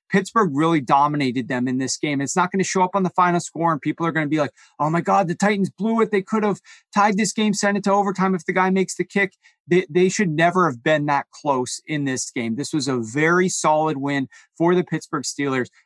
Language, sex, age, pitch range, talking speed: English, male, 30-49, 145-185 Hz, 255 wpm